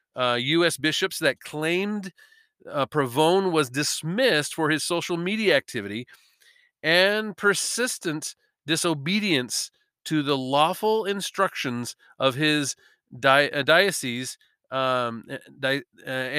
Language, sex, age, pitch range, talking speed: English, male, 40-59, 130-165 Hz, 105 wpm